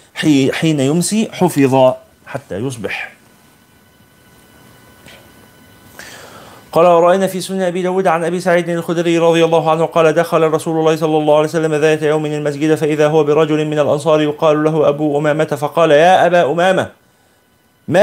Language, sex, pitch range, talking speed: Arabic, male, 120-170 Hz, 145 wpm